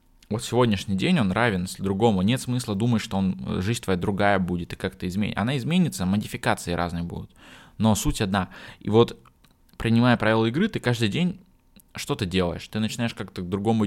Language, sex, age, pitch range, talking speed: Russian, male, 20-39, 90-110 Hz, 180 wpm